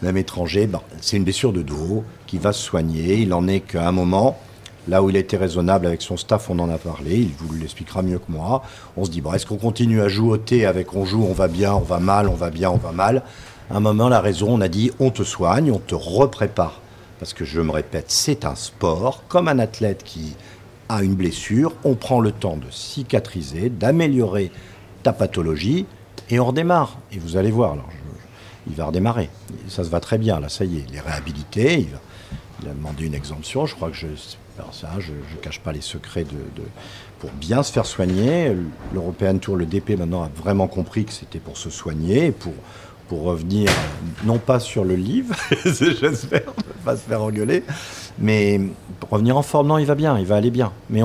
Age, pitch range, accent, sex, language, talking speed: 50-69, 90-120 Hz, French, male, French, 225 wpm